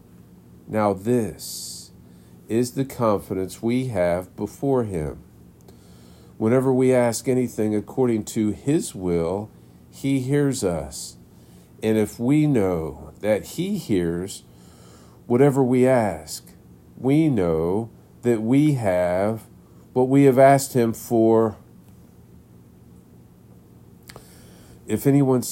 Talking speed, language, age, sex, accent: 100 wpm, English, 50-69, male, American